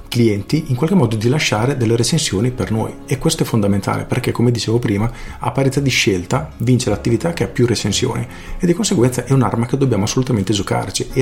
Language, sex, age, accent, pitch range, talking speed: Italian, male, 40-59, native, 100-125 Hz, 205 wpm